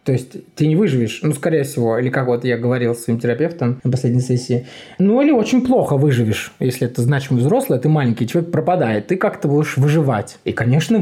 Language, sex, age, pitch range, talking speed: Russian, male, 20-39, 125-160 Hz, 205 wpm